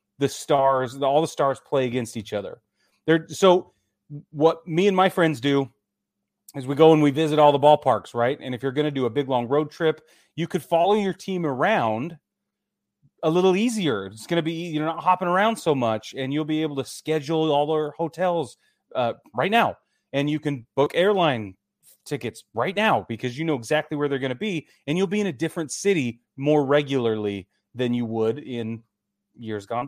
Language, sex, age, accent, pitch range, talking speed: English, male, 30-49, American, 120-165 Hz, 205 wpm